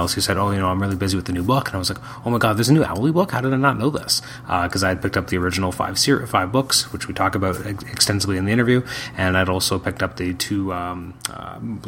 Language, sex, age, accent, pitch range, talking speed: English, male, 30-49, American, 90-110 Hz, 305 wpm